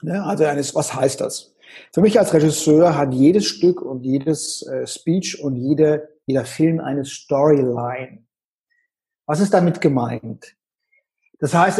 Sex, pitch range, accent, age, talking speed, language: male, 135-190 Hz, German, 50-69, 140 wpm, German